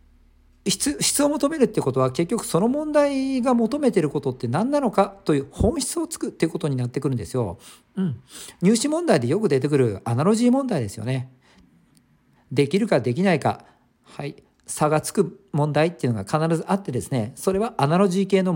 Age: 50-69